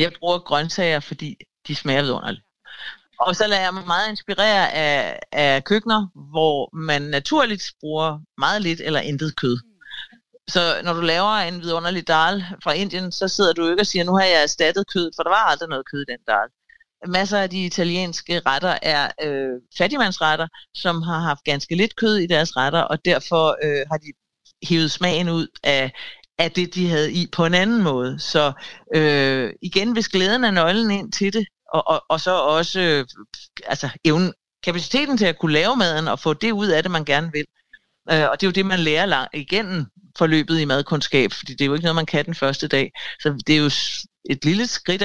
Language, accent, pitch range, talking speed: Danish, native, 150-190 Hz, 205 wpm